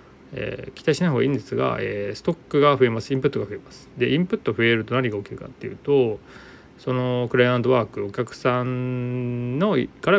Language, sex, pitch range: Japanese, male, 105-160 Hz